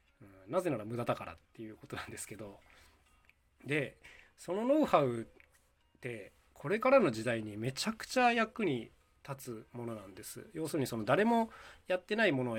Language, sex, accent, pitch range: Japanese, male, native, 105-165 Hz